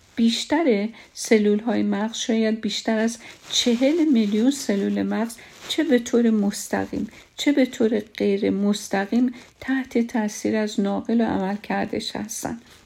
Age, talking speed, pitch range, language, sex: 50-69, 130 wpm, 200-225 Hz, Persian, female